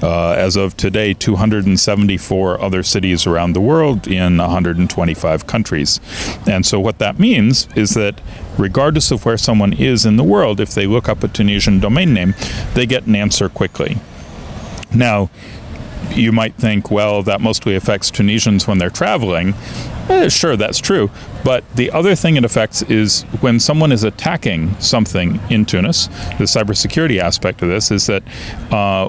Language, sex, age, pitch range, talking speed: Arabic, male, 40-59, 90-110 Hz, 160 wpm